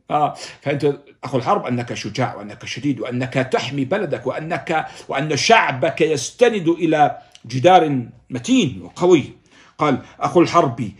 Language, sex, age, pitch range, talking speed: Arabic, male, 50-69, 140-185 Hz, 120 wpm